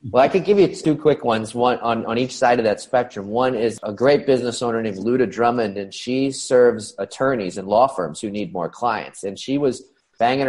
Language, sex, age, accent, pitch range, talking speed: English, male, 30-49, American, 100-120 Hz, 230 wpm